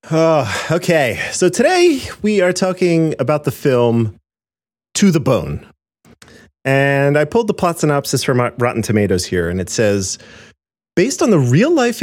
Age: 30-49